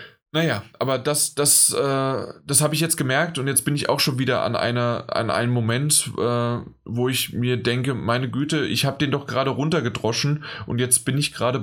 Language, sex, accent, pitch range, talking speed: German, male, German, 110-135 Hz, 205 wpm